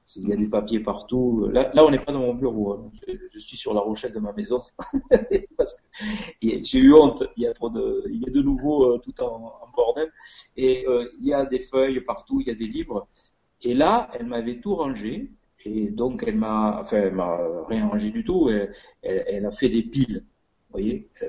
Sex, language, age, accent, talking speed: male, French, 50-69, French, 225 wpm